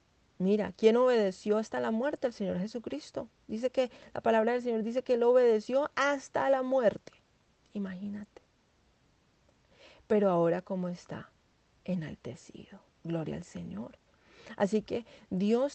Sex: female